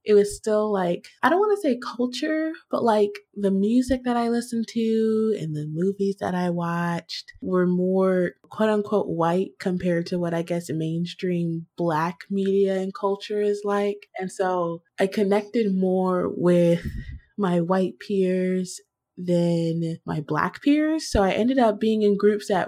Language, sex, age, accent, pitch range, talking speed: English, female, 20-39, American, 175-210 Hz, 165 wpm